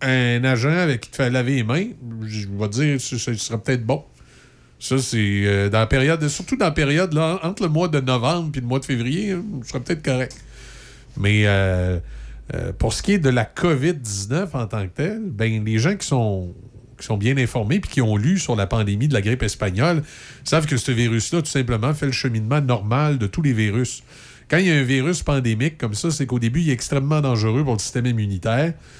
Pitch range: 110-145 Hz